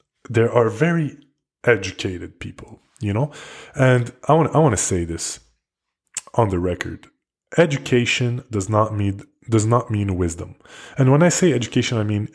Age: 20-39